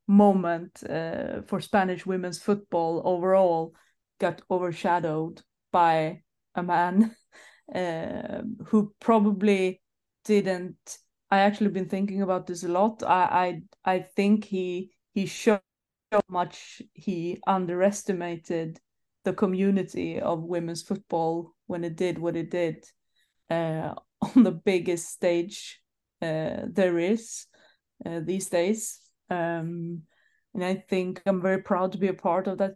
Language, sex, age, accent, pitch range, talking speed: English, female, 30-49, Swedish, 175-195 Hz, 130 wpm